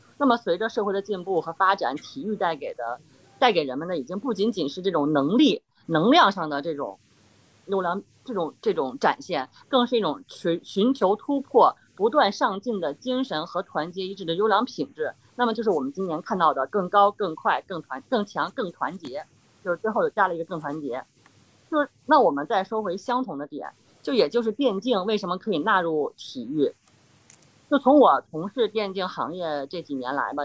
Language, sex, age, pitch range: Chinese, female, 20-39, 170-235 Hz